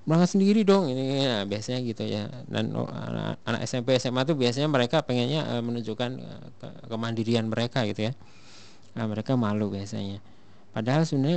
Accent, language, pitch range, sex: native, Indonesian, 110-130 Hz, male